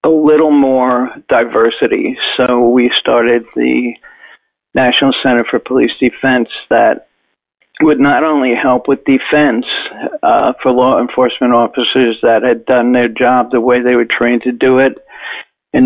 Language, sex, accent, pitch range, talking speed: English, male, American, 125-150 Hz, 150 wpm